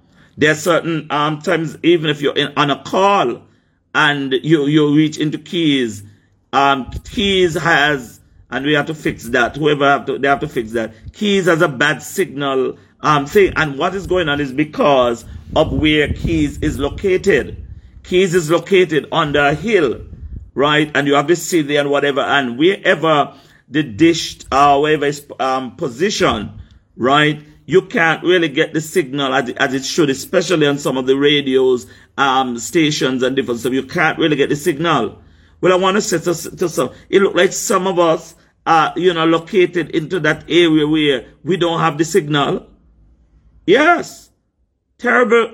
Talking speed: 180 wpm